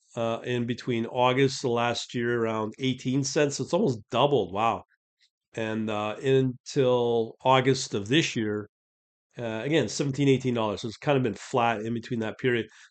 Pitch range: 115-135 Hz